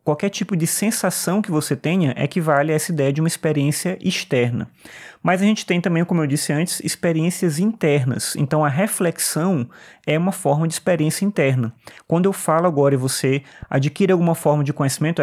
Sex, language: male, Portuguese